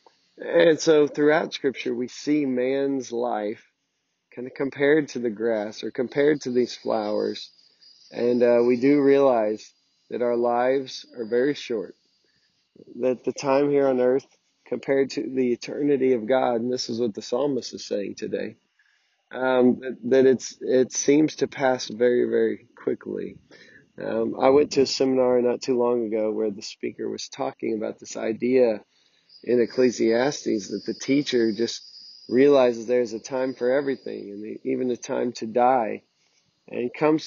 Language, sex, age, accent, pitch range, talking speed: English, male, 20-39, American, 120-135 Hz, 160 wpm